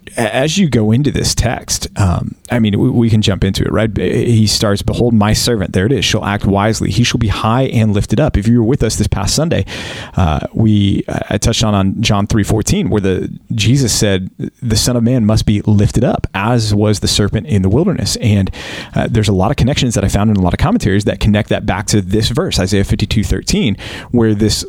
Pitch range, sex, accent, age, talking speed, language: 100-120 Hz, male, American, 30-49, 240 wpm, English